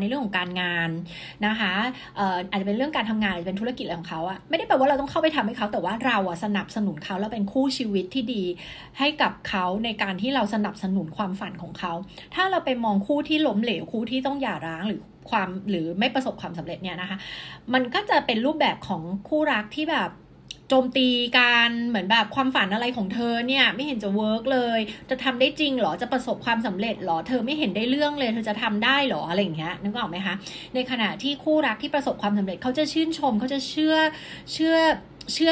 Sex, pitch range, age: female, 195-270 Hz, 20-39